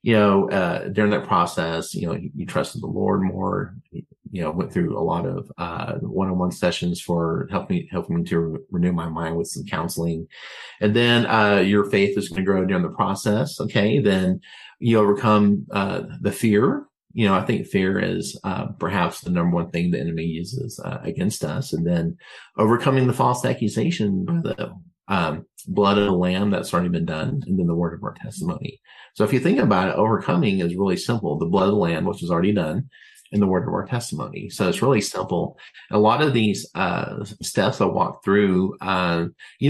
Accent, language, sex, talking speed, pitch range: American, English, male, 210 wpm, 90-110 Hz